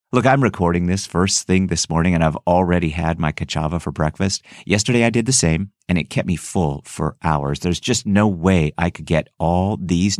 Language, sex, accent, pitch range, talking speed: English, male, American, 85-115 Hz, 220 wpm